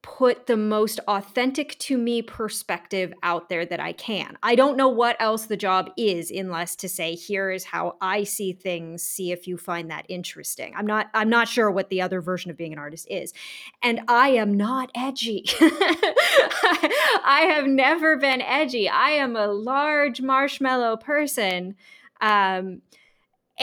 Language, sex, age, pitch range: English, female, 10-29, 190-250 Hz